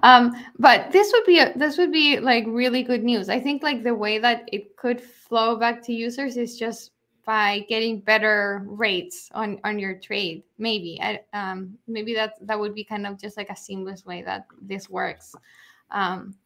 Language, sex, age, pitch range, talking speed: English, female, 10-29, 210-245 Hz, 195 wpm